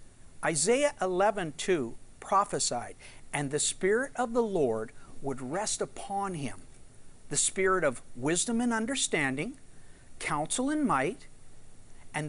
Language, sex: English, male